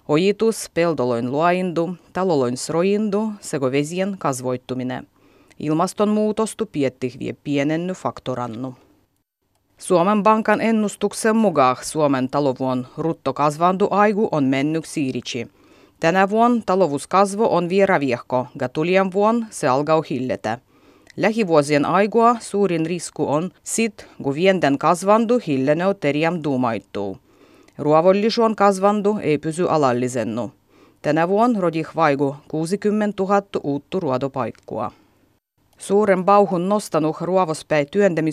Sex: female